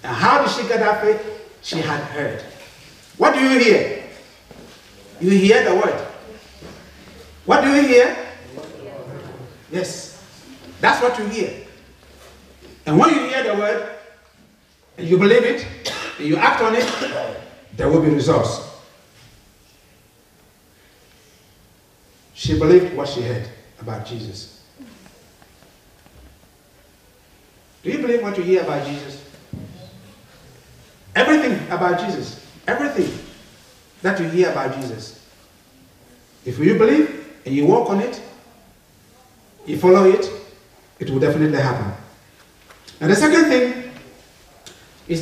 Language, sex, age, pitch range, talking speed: English, male, 60-79, 155-245 Hz, 120 wpm